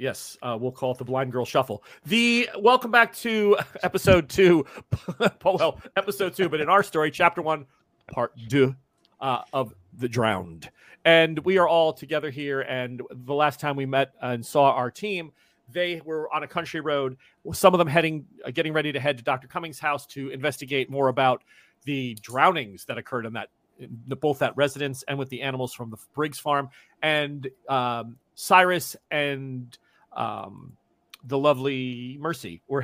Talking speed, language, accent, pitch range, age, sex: 175 wpm, English, American, 130-180 Hz, 40-59, male